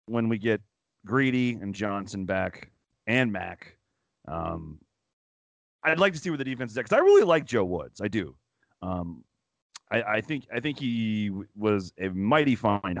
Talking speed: 160 wpm